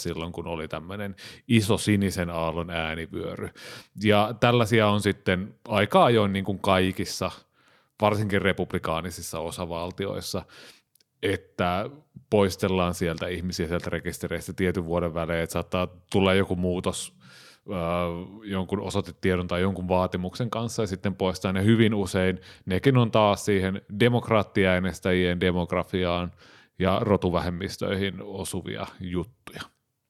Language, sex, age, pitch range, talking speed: Finnish, male, 30-49, 90-110 Hz, 110 wpm